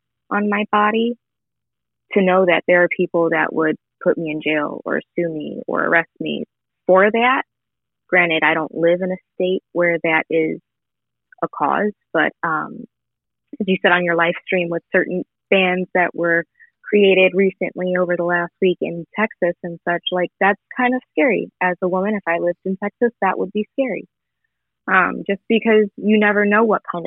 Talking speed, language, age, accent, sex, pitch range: 185 wpm, English, 20-39, American, female, 175-205 Hz